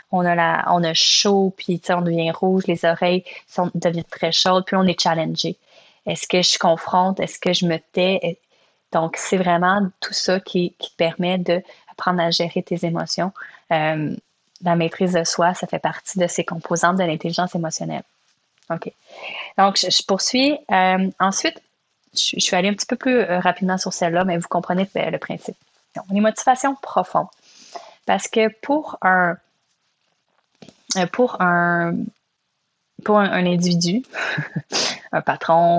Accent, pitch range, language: Canadian, 170-195 Hz, French